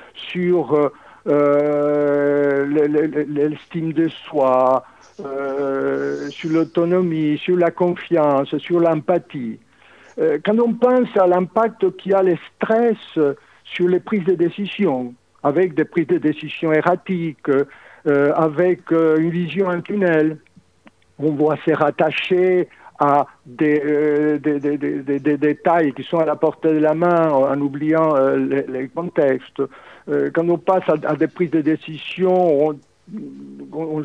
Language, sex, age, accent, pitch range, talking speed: French, male, 60-79, French, 145-170 Hz, 145 wpm